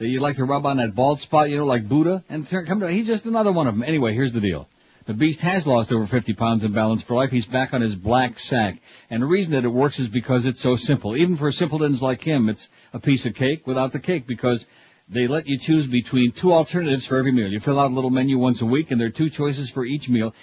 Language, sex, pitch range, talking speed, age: English, male, 120-150 Hz, 275 wpm, 60-79